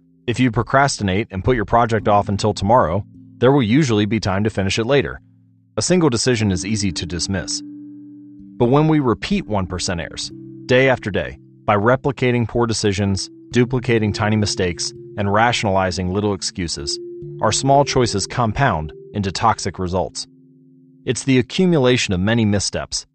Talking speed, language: 155 wpm, Hindi